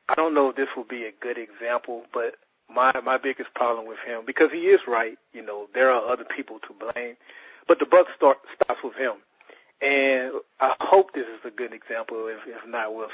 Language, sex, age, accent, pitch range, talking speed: English, male, 40-59, American, 125-170 Hz, 220 wpm